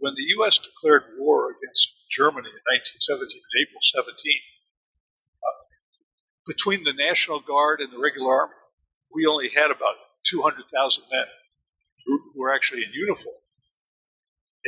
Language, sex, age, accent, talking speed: English, male, 50-69, American, 130 wpm